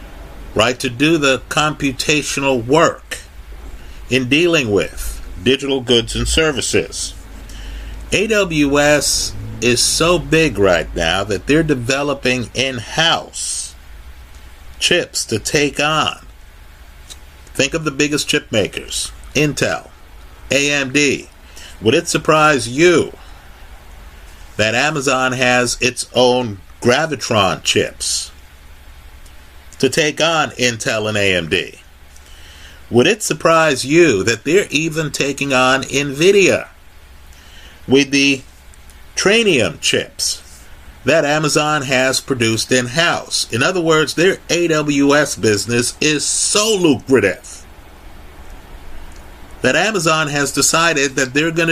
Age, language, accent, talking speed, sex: 50-69, English, American, 100 wpm, male